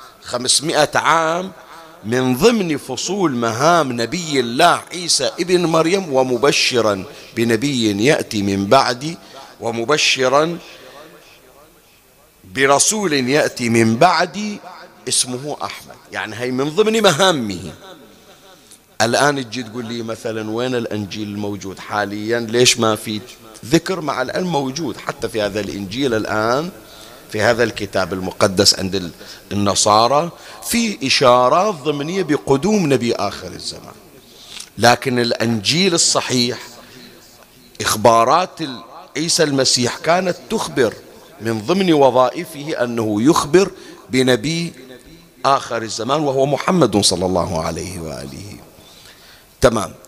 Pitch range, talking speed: 110-160 Hz, 100 wpm